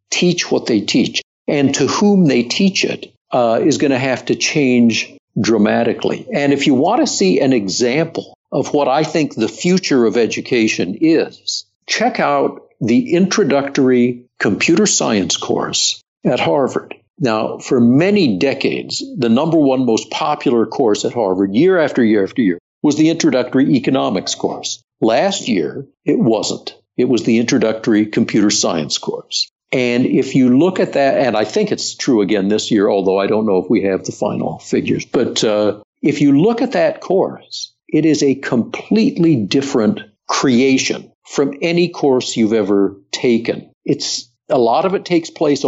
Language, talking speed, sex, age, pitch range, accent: English, 170 wpm, male, 60-79, 115-155 Hz, American